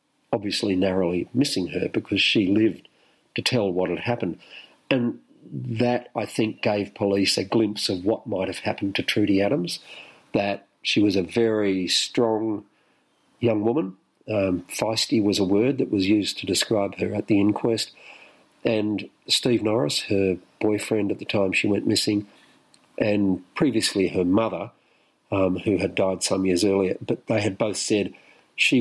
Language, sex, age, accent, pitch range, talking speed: English, male, 50-69, Australian, 95-115 Hz, 160 wpm